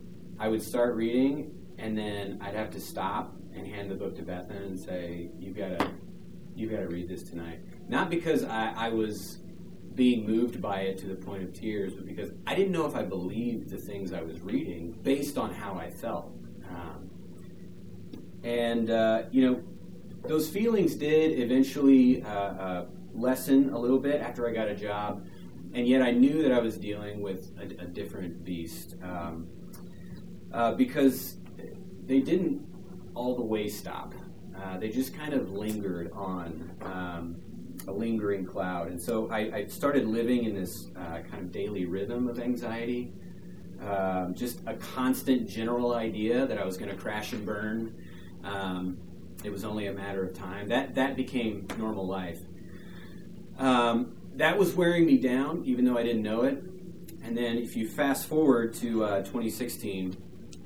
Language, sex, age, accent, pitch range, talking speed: English, male, 30-49, American, 95-125 Hz, 170 wpm